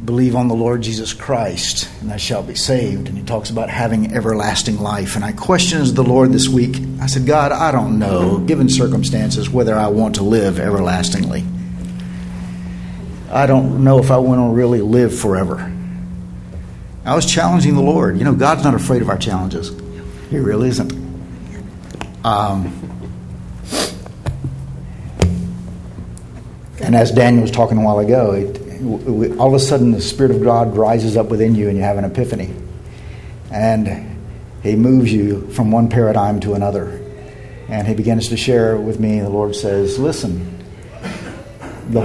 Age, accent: 60-79, American